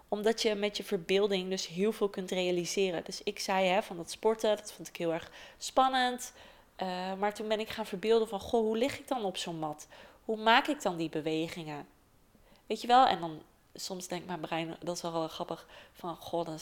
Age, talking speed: 20-39, 225 wpm